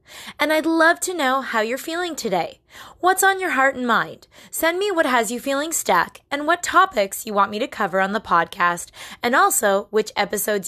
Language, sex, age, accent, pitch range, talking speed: English, female, 20-39, American, 205-300 Hz, 210 wpm